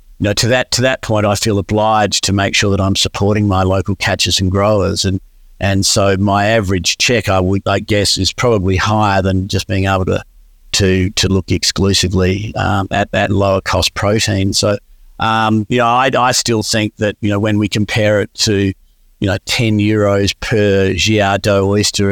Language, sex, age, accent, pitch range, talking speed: English, male, 50-69, Australian, 95-105 Hz, 195 wpm